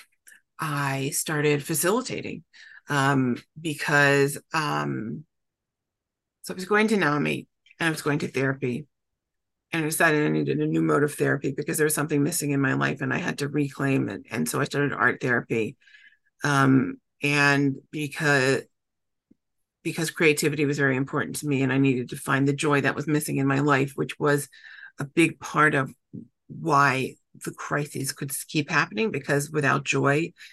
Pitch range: 135-150 Hz